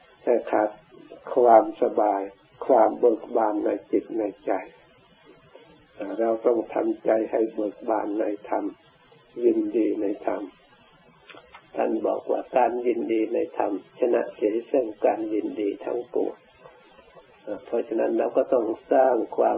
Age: 60-79